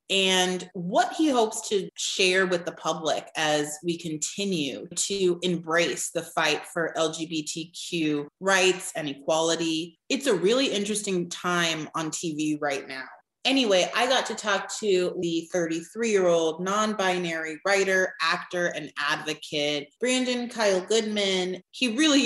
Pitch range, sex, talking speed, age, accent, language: 160-205 Hz, female, 130 wpm, 30-49, American, English